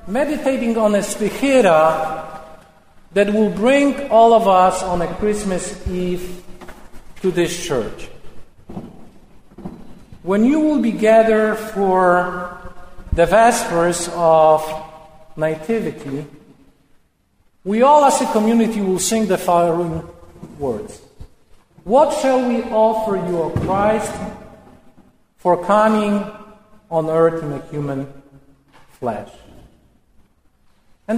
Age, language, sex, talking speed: 50-69, Ukrainian, male, 100 wpm